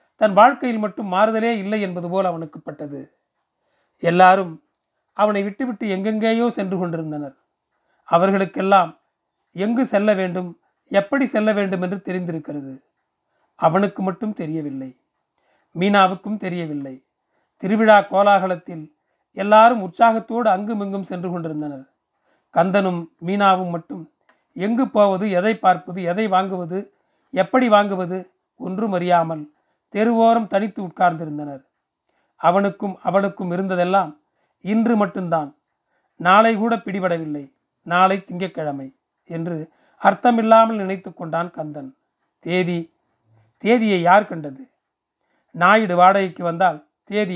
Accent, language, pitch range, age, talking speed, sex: native, Tamil, 165-210 Hz, 40-59, 95 wpm, male